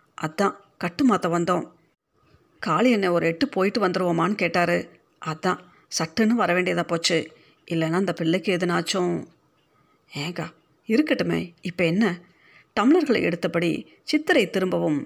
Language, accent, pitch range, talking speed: Tamil, native, 170-245 Hz, 100 wpm